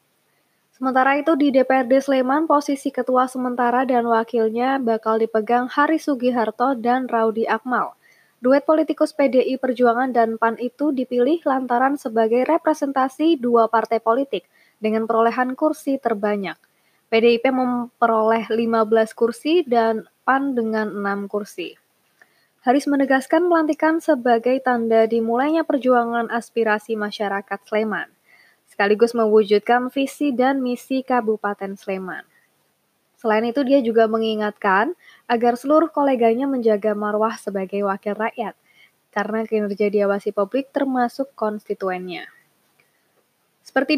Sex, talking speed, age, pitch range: female, 110 wpm, 20-39, 225-270 Hz